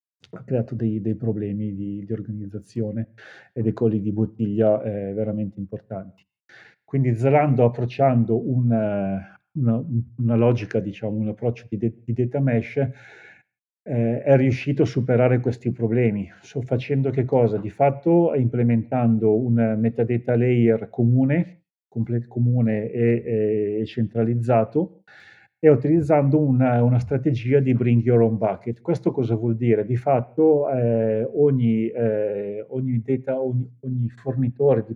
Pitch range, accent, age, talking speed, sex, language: 110-130 Hz, native, 40-59, 135 wpm, male, Italian